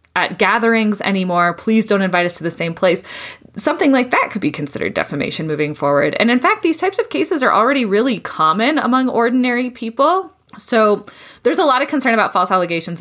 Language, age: English, 10-29